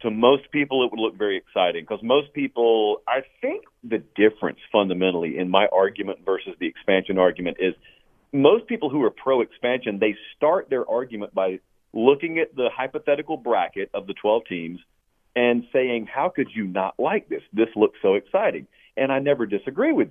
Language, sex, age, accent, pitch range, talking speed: English, male, 40-59, American, 115-175 Hz, 180 wpm